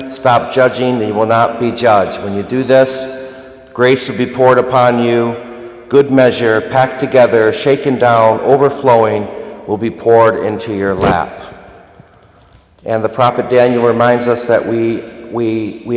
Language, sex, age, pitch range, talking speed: English, male, 50-69, 110-130 Hz, 155 wpm